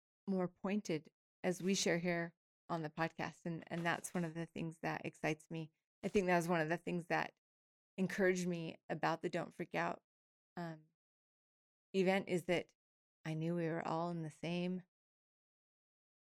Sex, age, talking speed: female, 30-49, 175 wpm